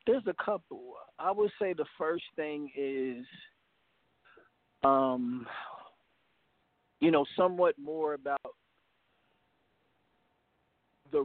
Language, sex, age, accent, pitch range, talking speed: English, male, 40-59, American, 135-160 Hz, 90 wpm